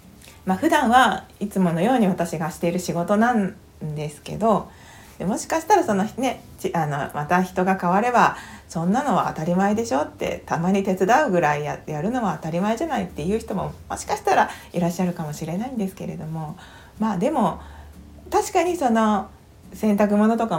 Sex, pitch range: female, 165-220 Hz